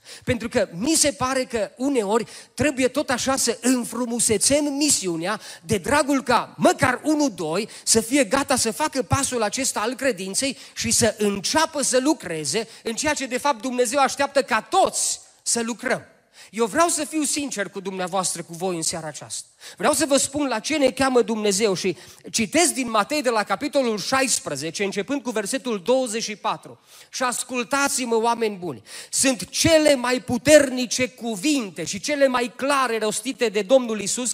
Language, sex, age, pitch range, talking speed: Romanian, male, 30-49, 200-265 Hz, 165 wpm